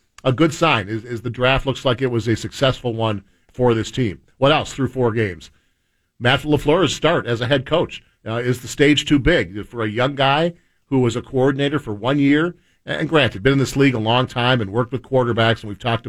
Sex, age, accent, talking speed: male, 50-69, American, 230 wpm